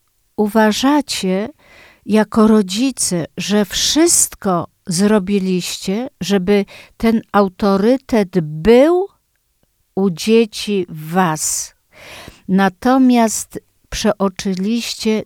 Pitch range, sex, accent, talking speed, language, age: 195-270 Hz, female, native, 60 wpm, Polish, 50-69